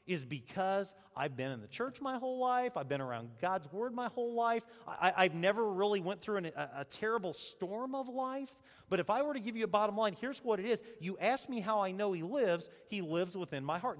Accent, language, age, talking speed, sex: American, English, 40-59, 240 wpm, male